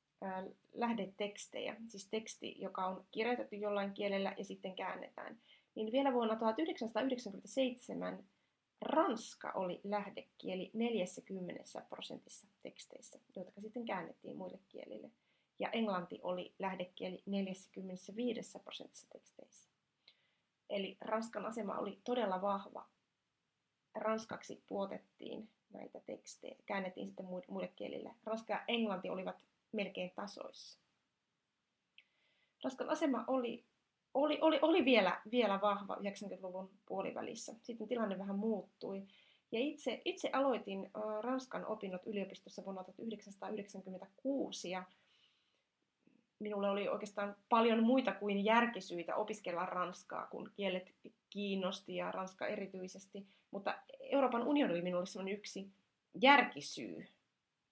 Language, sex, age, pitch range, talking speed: Finnish, female, 30-49, 190-235 Hz, 105 wpm